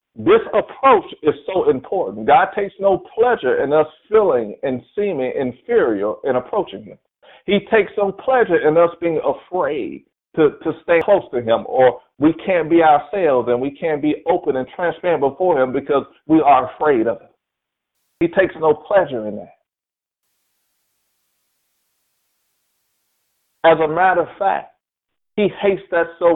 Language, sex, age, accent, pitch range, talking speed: English, male, 50-69, American, 140-205 Hz, 155 wpm